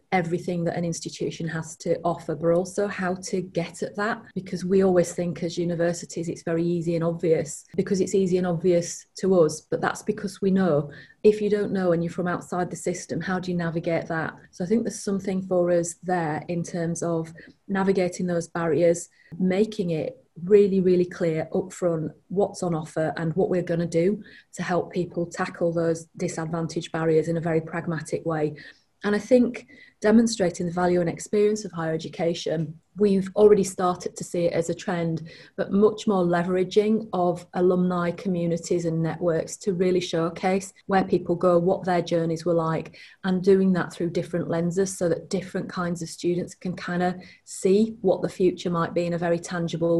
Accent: British